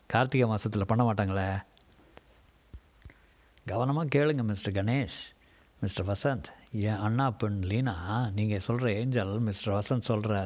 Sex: male